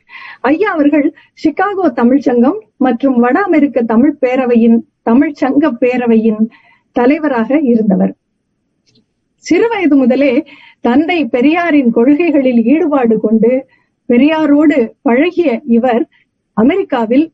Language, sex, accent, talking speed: Tamil, female, native, 85 wpm